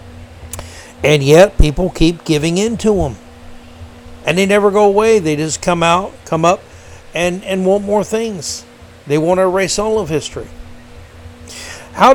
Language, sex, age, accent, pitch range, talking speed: English, male, 60-79, American, 130-180 Hz, 160 wpm